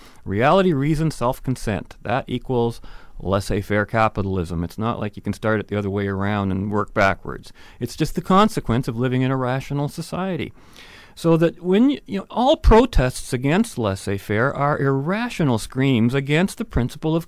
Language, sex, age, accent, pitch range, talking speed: English, male, 40-59, American, 105-150 Hz, 165 wpm